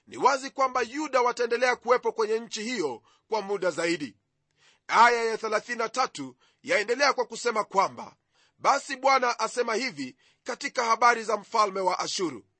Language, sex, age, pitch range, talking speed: Swahili, male, 30-49, 215-265 Hz, 140 wpm